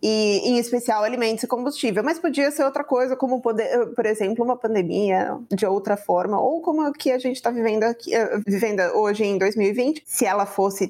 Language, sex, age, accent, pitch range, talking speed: Portuguese, female, 20-39, Brazilian, 200-255 Hz, 205 wpm